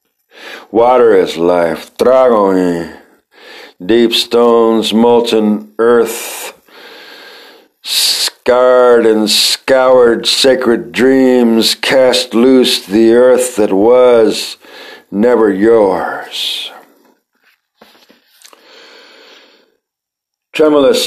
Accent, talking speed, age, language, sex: American, 65 wpm, 60-79, English, male